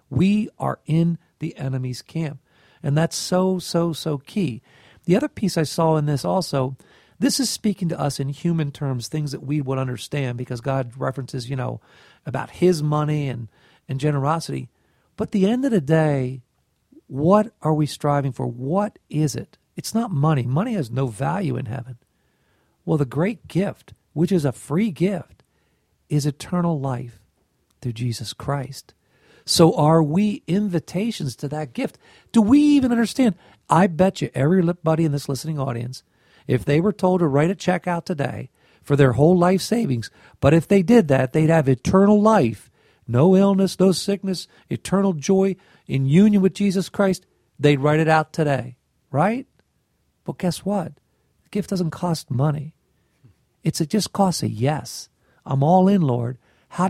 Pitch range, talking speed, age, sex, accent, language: 135-185 Hz, 170 wpm, 50-69, male, American, English